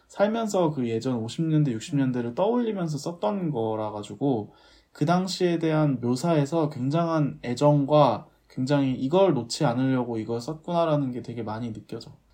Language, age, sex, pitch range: Korean, 20-39, male, 120-170 Hz